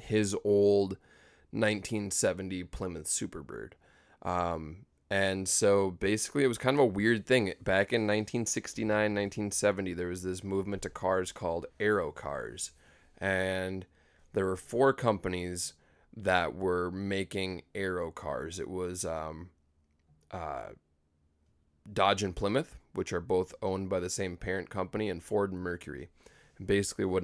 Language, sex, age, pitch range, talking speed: English, male, 20-39, 85-100 Hz, 135 wpm